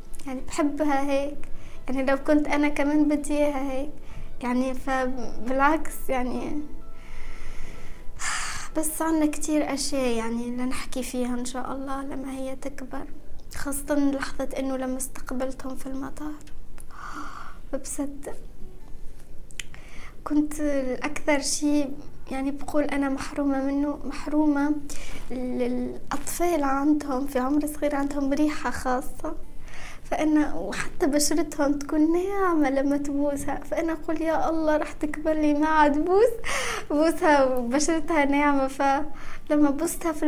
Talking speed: 110 wpm